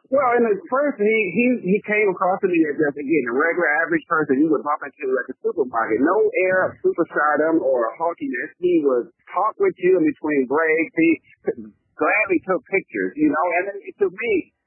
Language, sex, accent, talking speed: English, male, American, 200 wpm